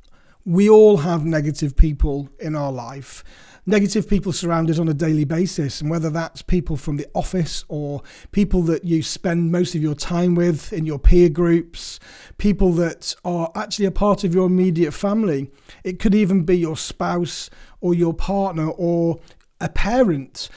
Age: 30-49